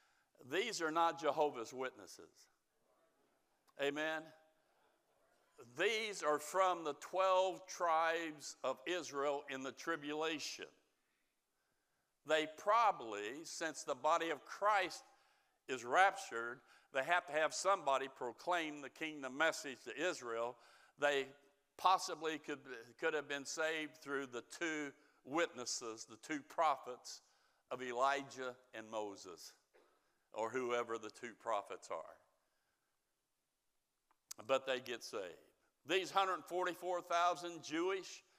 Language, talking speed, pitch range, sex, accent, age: English, 105 wpm, 130-175 Hz, male, American, 60-79